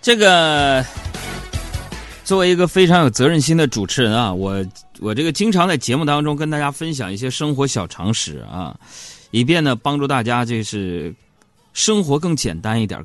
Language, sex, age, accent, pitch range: Chinese, male, 30-49, native, 115-190 Hz